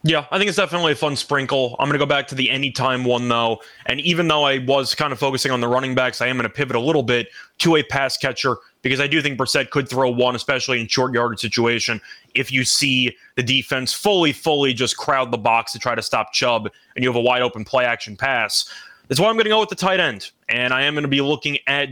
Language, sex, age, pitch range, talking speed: English, male, 20-39, 130-170 Hz, 270 wpm